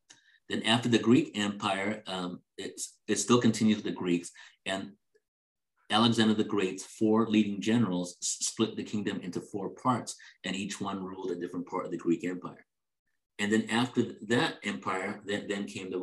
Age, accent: 50-69, American